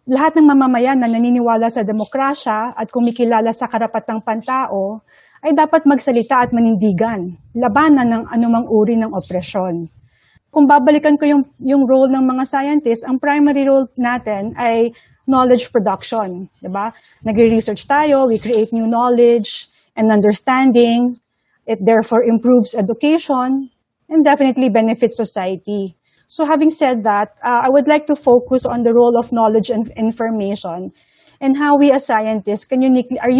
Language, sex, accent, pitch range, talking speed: Filipino, female, native, 220-260 Hz, 145 wpm